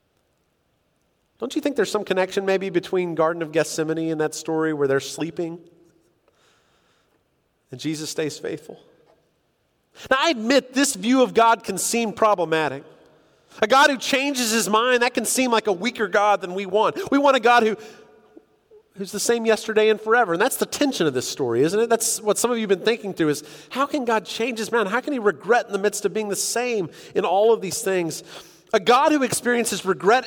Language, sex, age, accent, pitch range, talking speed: English, male, 40-59, American, 195-260 Hz, 205 wpm